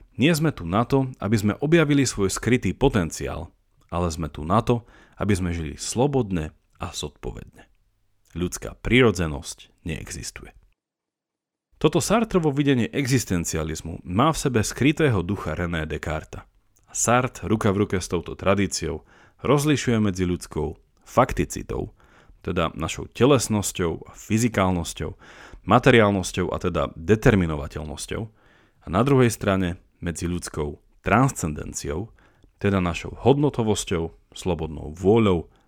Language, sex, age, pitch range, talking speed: Slovak, male, 40-59, 85-120 Hz, 115 wpm